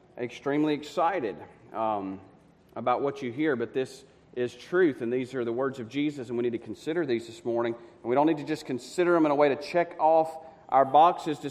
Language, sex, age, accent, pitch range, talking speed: English, male, 40-59, American, 130-170 Hz, 225 wpm